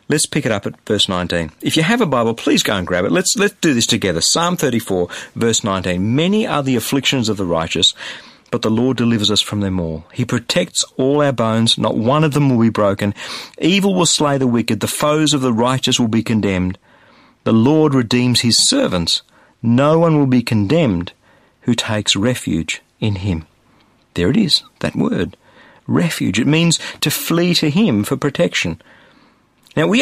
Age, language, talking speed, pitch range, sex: 50-69, English, 195 wpm, 110-150 Hz, male